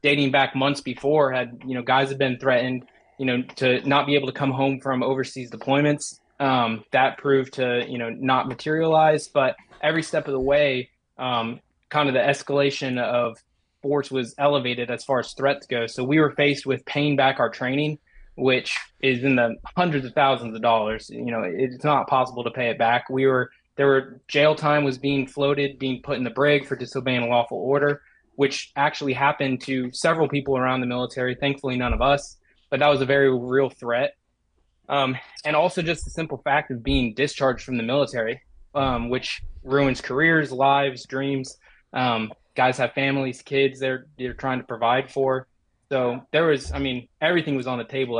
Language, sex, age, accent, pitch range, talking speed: English, male, 20-39, American, 125-140 Hz, 195 wpm